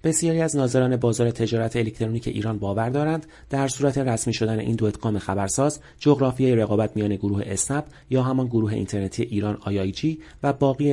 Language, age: Persian, 30-49